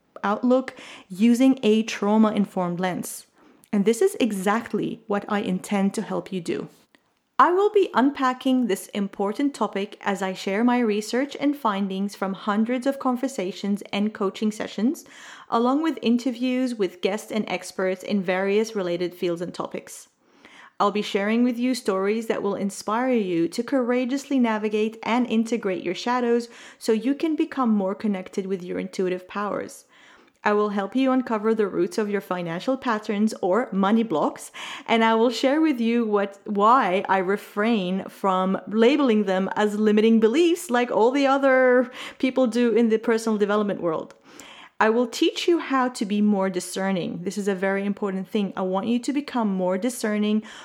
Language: English